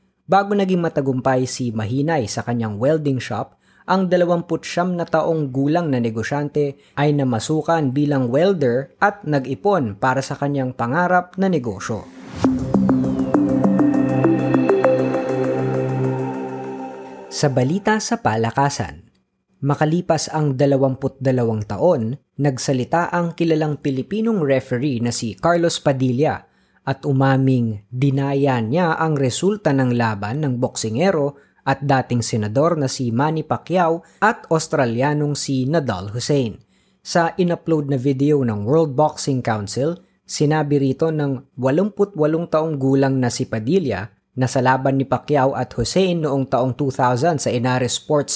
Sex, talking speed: female, 125 wpm